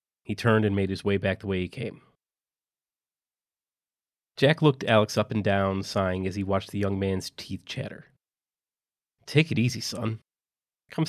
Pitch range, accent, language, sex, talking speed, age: 100-130 Hz, American, English, male, 170 wpm, 30-49